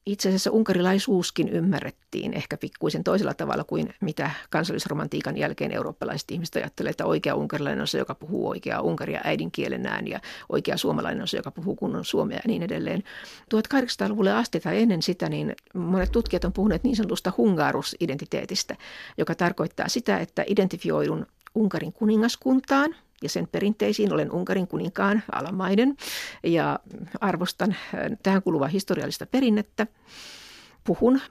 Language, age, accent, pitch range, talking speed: Finnish, 60-79, native, 180-215 Hz, 135 wpm